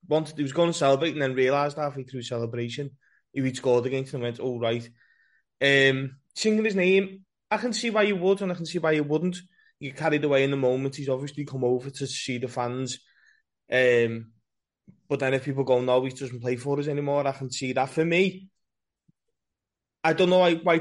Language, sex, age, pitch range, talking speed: English, male, 20-39, 135-170 Hz, 215 wpm